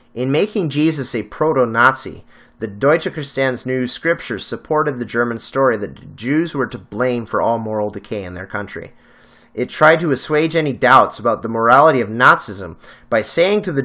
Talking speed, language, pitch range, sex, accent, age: 180 wpm, English, 105-135 Hz, male, American, 30-49